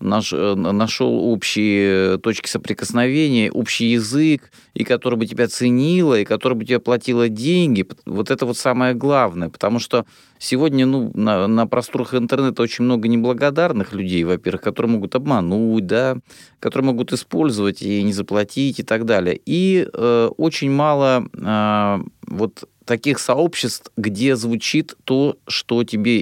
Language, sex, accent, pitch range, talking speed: Russian, male, native, 105-125 Hz, 140 wpm